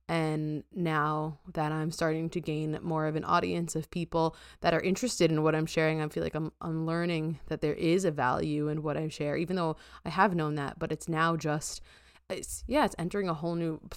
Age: 20-39